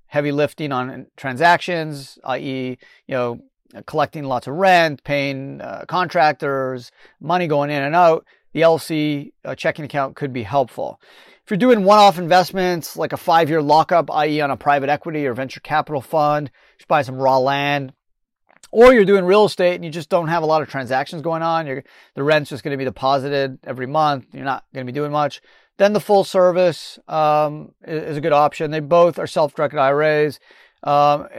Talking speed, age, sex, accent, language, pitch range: 185 wpm, 30-49, male, American, English, 135-170 Hz